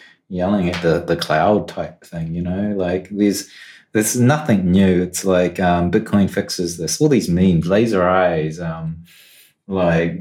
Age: 30-49